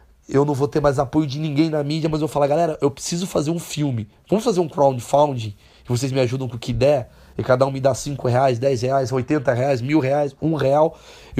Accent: Brazilian